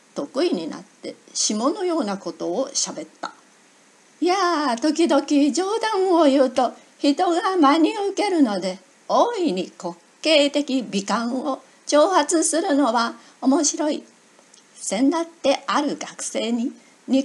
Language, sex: Japanese, female